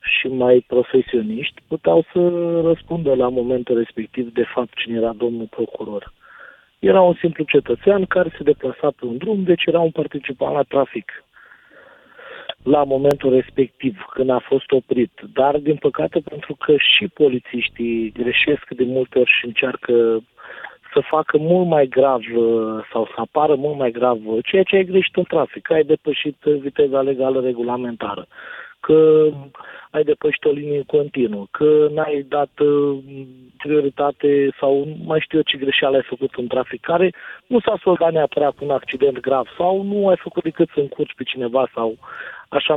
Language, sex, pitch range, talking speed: Romanian, male, 130-180 Hz, 155 wpm